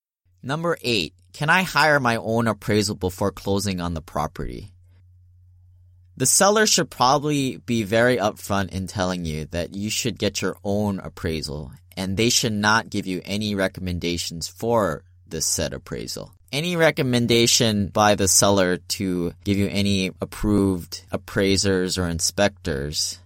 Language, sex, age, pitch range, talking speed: English, male, 20-39, 90-110 Hz, 140 wpm